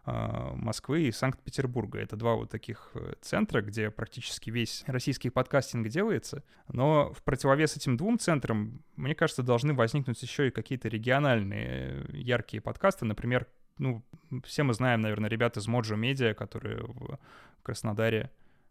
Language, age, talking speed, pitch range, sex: Russian, 20-39, 140 wpm, 110-135 Hz, male